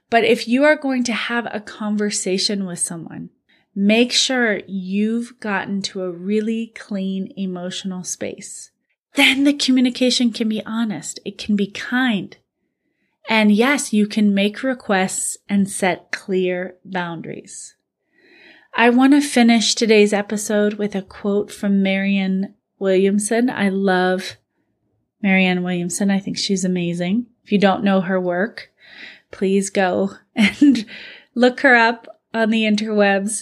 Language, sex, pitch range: English, female, 195-230 Hz